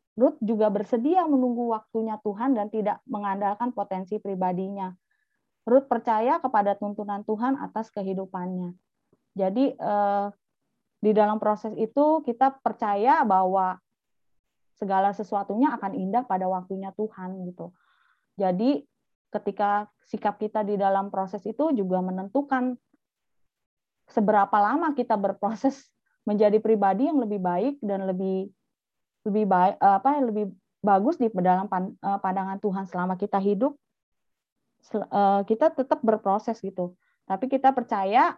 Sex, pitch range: female, 195-240 Hz